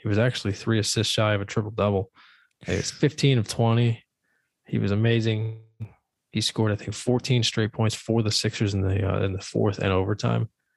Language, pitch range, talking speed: English, 100-110 Hz, 195 wpm